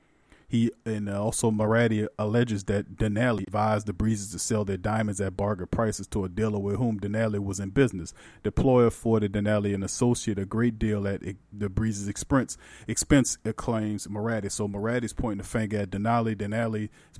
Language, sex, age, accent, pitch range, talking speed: English, male, 40-59, American, 100-115 Hz, 180 wpm